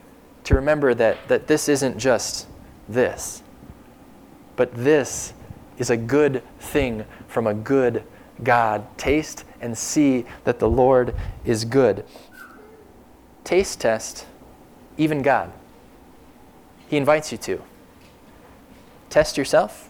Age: 20-39